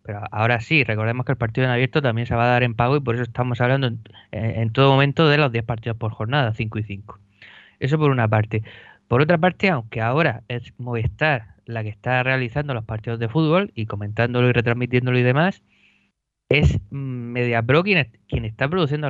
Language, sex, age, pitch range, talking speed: Spanish, male, 20-39, 115-145 Hz, 205 wpm